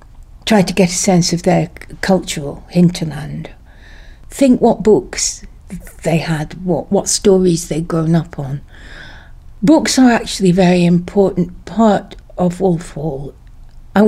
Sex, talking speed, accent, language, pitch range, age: female, 135 wpm, British, English, 165-210 Hz, 60-79